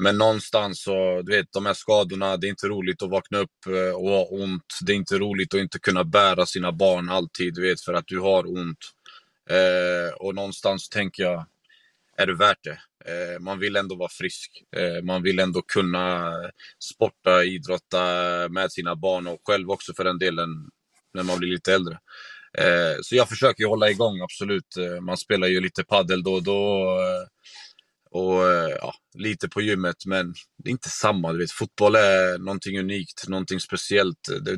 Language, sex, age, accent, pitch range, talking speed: Swedish, male, 20-39, native, 90-100 Hz, 175 wpm